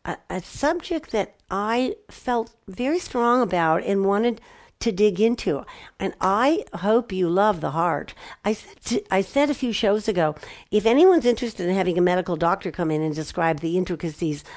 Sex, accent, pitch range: female, American, 175-225 Hz